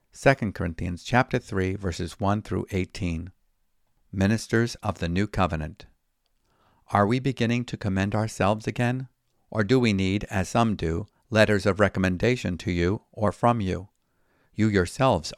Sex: male